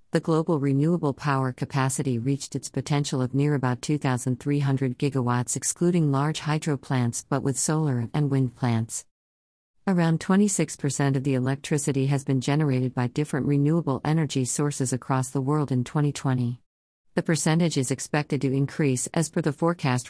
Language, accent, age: English, American, 50-69